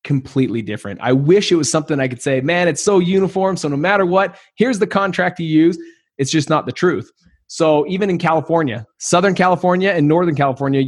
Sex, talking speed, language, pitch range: male, 205 wpm, English, 135-175 Hz